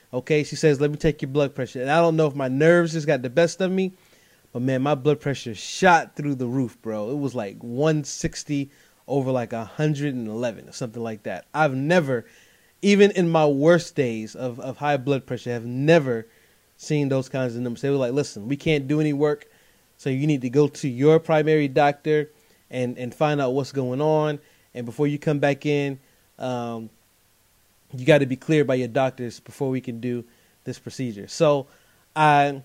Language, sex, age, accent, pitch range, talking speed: English, male, 20-39, American, 125-155 Hz, 200 wpm